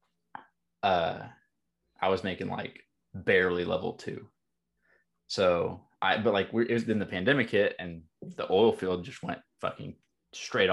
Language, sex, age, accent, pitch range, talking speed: English, male, 20-39, American, 95-120 Hz, 150 wpm